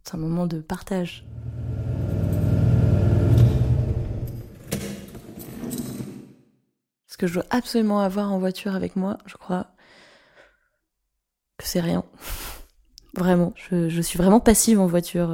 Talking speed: 110 wpm